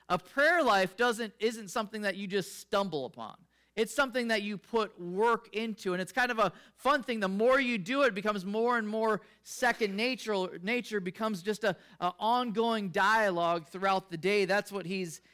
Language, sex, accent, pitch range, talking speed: English, male, American, 190-230 Hz, 190 wpm